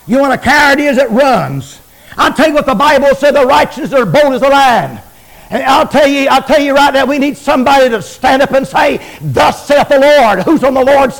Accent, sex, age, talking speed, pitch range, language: American, male, 60-79, 250 wpm, 190-275 Hz, English